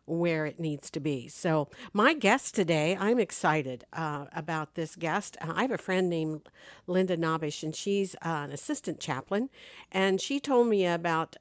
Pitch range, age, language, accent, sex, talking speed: 160-200 Hz, 50-69, English, American, female, 180 wpm